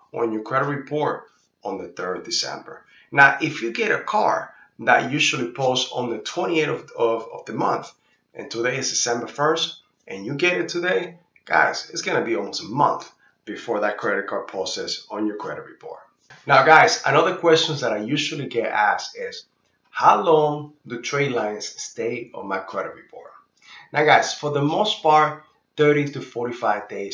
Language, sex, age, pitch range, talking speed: English, male, 30-49, 115-160 Hz, 180 wpm